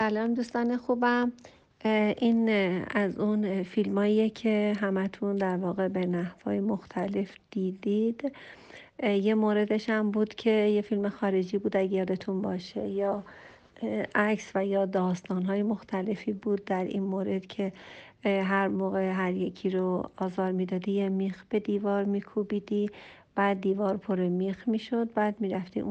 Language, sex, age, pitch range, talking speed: Persian, female, 50-69, 190-220 Hz, 140 wpm